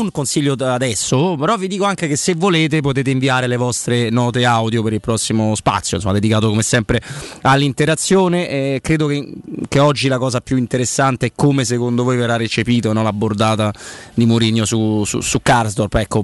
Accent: native